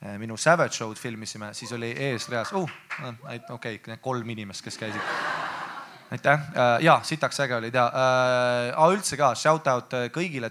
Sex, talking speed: male, 135 wpm